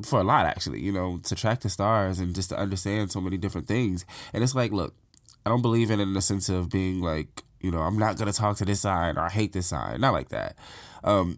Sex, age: male, 20-39